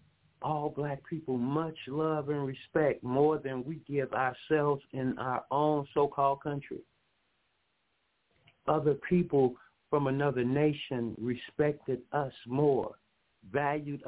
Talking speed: 110 wpm